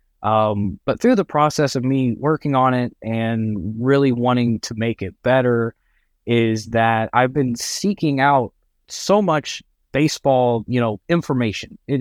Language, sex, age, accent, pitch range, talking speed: English, male, 20-39, American, 110-135 Hz, 150 wpm